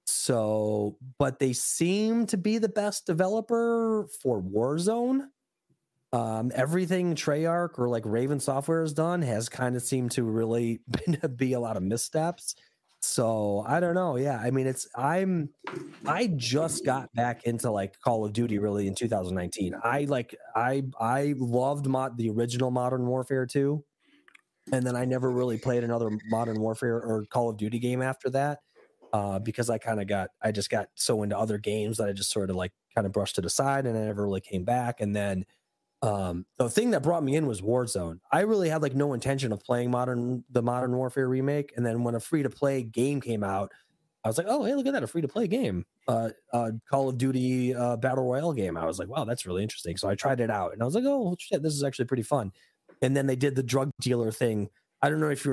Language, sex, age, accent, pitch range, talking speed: English, male, 30-49, American, 115-145 Hz, 215 wpm